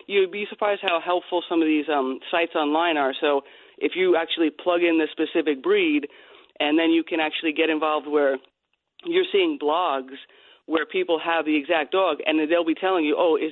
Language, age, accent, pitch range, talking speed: English, 30-49, American, 150-180 Hz, 195 wpm